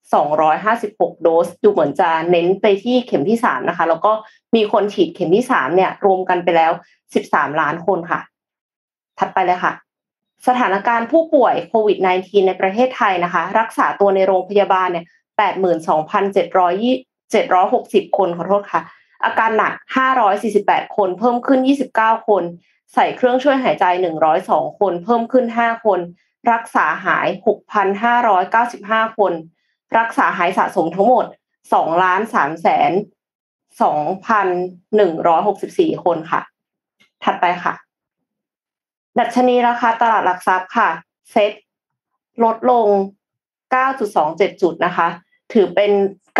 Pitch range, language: 185-235 Hz, Thai